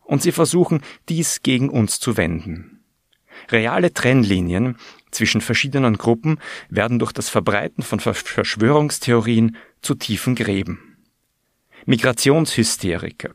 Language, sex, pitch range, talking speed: German, male, 105-130 Hz, 105 wpm